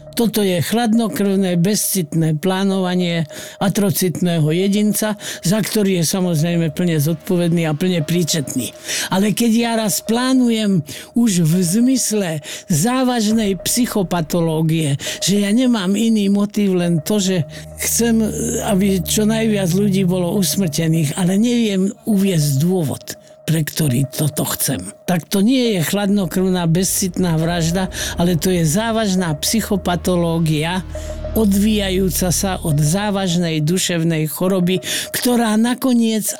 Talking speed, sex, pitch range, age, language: 115 wpm, male, 165-215 Hz, 50-69, Slovak